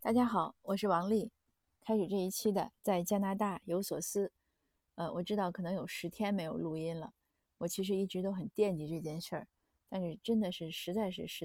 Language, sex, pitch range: Chinese, female, 170-210 Hz